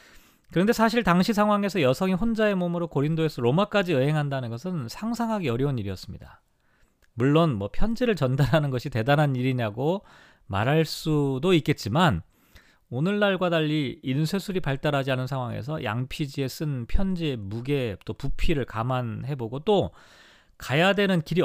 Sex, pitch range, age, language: male, 130-185 Hz, 40-59, Korean